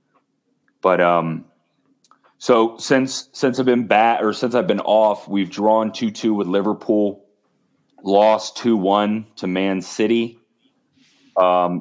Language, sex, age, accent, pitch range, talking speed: English, male, 30-49, American, 85-105 Hz, 120 wpm